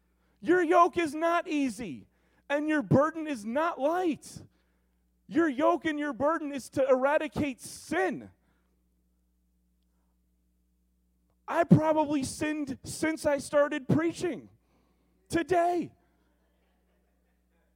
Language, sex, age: English, male, 30-49